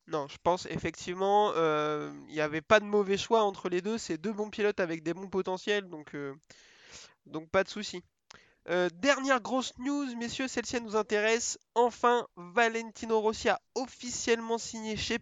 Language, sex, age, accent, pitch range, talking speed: French, male, 20-39, French, 165-215 Hz, 165 wpm